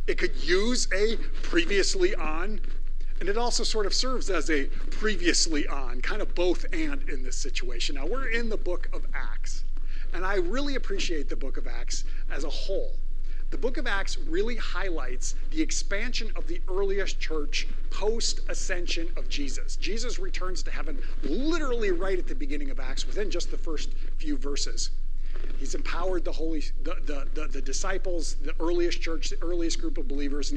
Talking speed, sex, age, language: 180 wpm, male, 50-69, English